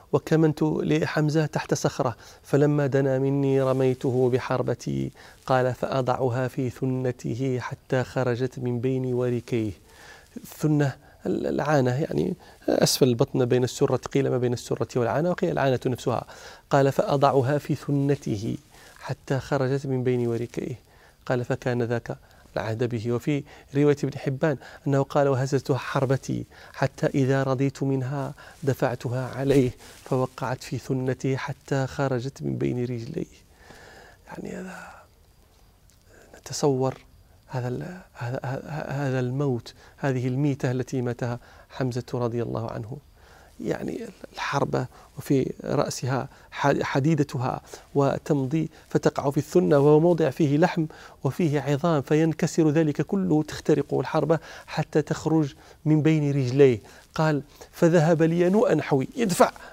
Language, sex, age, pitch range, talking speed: Arabic, male, 30-49, 125-155 Hz, 115 wpm